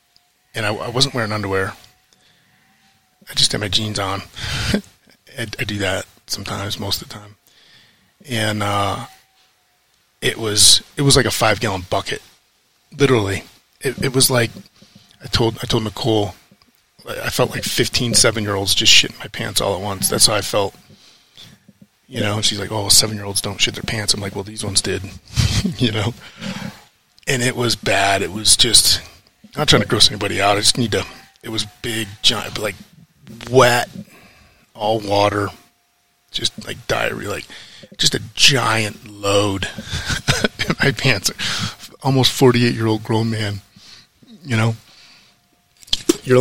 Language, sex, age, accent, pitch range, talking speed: English, male, 30-49, American, 100-120 Hz, 165 wpm